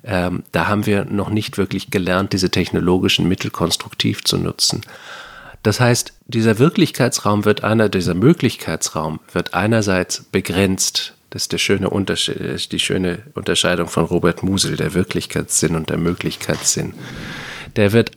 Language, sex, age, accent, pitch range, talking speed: German, male, 40-59, German, 95-130 Hz, 140 wpm